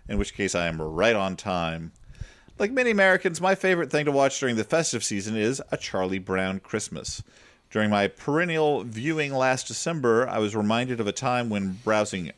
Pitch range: 95-145 Hz